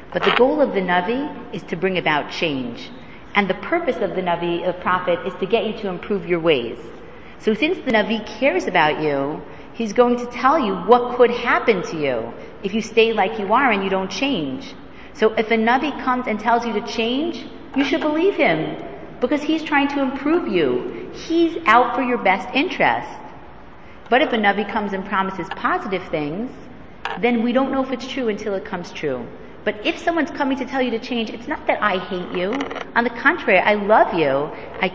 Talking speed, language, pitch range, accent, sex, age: 210 wpm, English, 190-260 Hz, American, female, 40-59